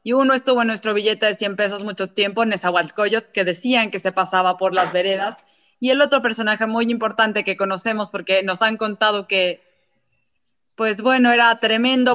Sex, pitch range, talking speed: female, 200-250 Hz, 190 wpm